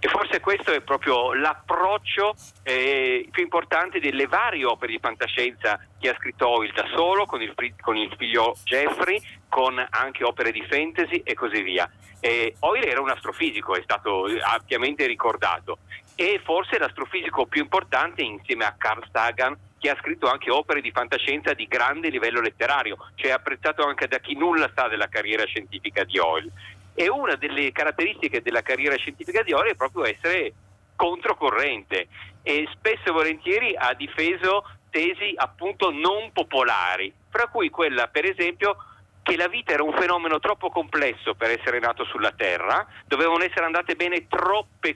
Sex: male